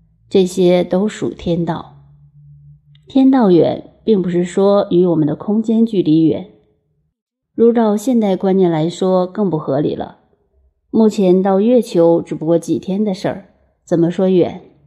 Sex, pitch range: female, 160-200 Hz